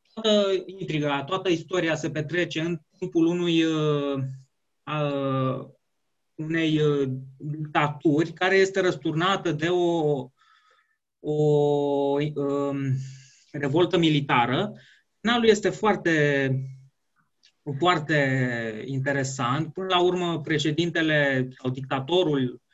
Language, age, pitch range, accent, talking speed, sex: Romanian, 20-39, 145-195 Hz, native, 85 wpm, male